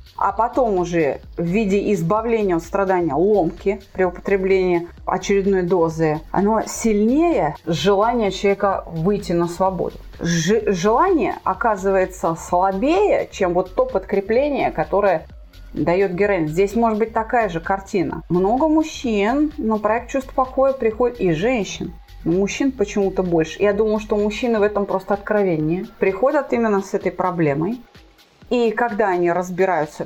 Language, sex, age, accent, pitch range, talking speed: Russian, female, 30-49, native, 180-230 Hz, 135 wpm